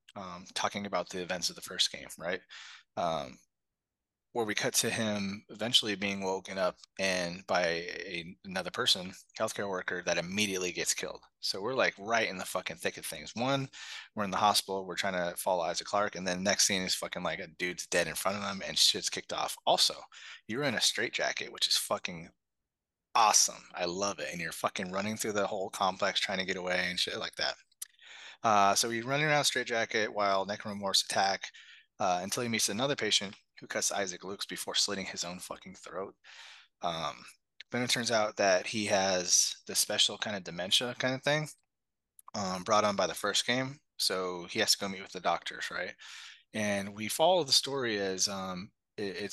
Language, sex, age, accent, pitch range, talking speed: English, male, 30-49, American, 95-115 Hz, 200 wpm